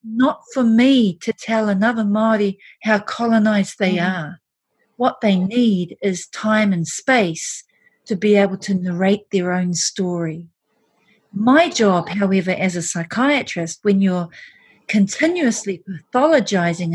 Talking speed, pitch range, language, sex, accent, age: 125 wpm, 190-230 Hz, English, female, Australian, 40-59